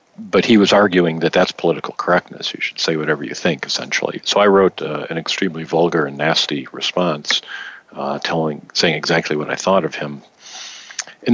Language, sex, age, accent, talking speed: English, male, 50-69, American, 185 wpm